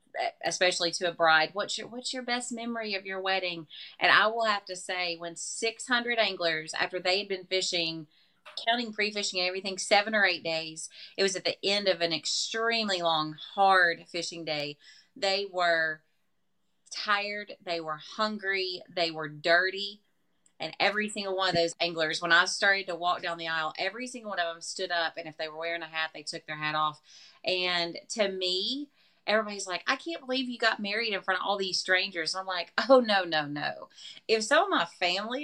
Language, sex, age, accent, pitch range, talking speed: English, female, 30-49, American, 165-205 Hz, 200 wpm